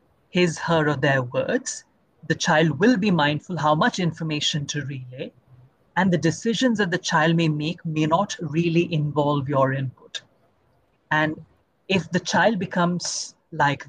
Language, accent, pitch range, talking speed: English, Indian, 150-180 Hz, 150 wpm